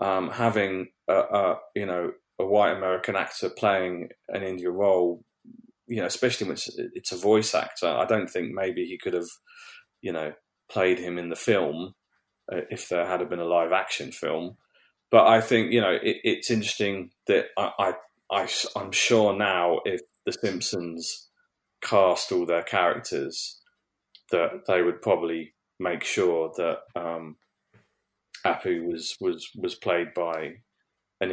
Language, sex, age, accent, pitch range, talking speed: English, male, 30-49, British, 90-135 Hz, 155 wpm